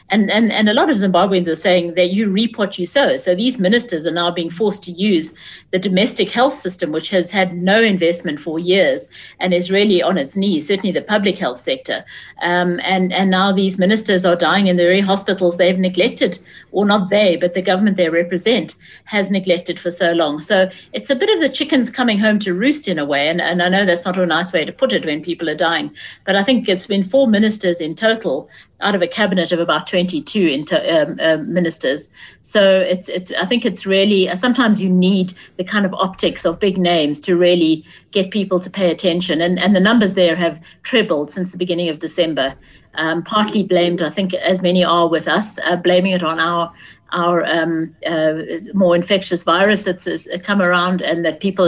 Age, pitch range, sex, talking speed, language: 60-79, 175-200 Hz, female, 220 wpm, English